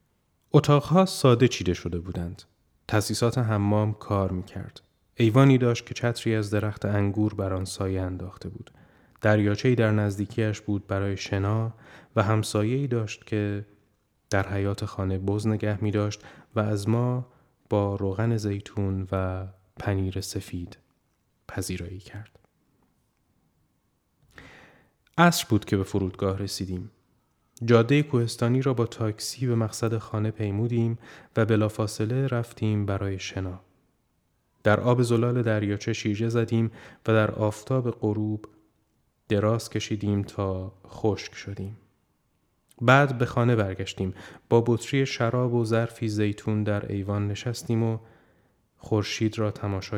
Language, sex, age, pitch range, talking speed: Persian, male, 20-39, 100-115 Hz, 120 wpm